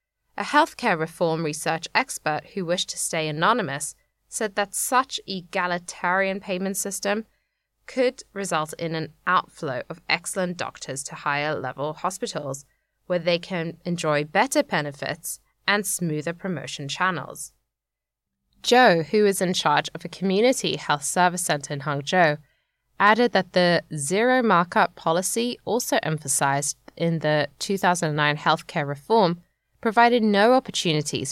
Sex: female